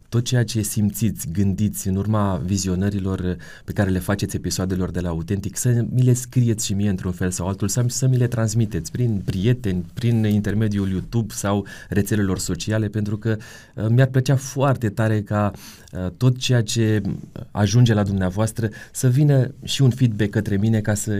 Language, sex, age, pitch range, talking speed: Romanian, male, 30-49, 100-120 Hz, 170 wpm